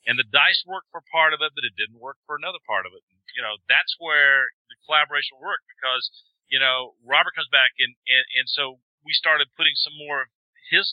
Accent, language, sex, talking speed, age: American, English, male, 230 wpm, 40-59